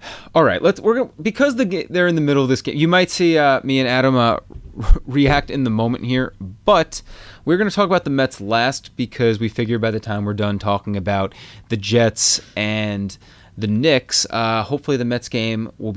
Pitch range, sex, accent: 110-145 Hz, male, American